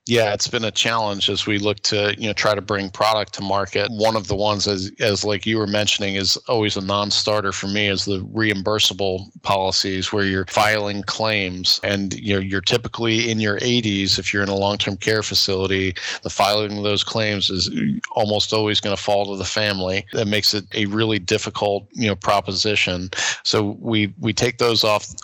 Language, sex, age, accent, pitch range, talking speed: English, male, 40-59, American, 100-110 Hz, 205 wpm